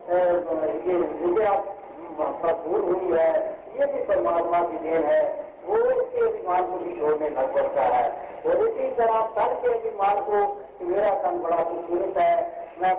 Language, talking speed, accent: Hindi, 150 wpm, native